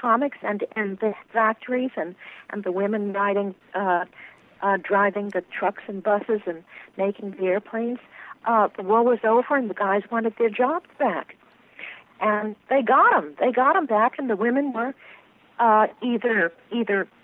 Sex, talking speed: female, 165 wpm